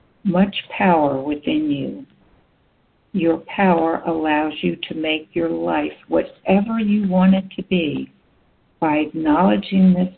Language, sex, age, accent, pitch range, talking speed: English, female, 60-79, American, 150-205 Hz, 125 wpm